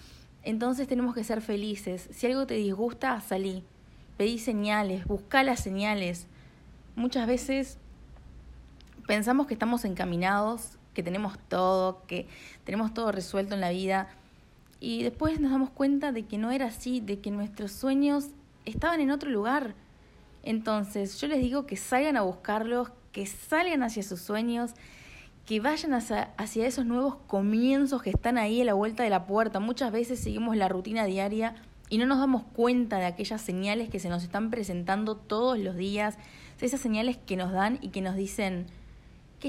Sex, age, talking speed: female, 20-39, 170 wpm